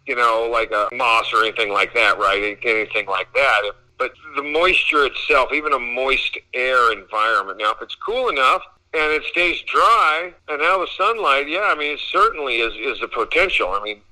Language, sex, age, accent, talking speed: English, male, 50-69, American, 195 wpm